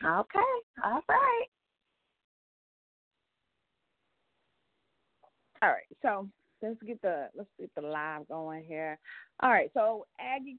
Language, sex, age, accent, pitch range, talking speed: English, female, 40-59, American, 170-245 Hz, 110 wpm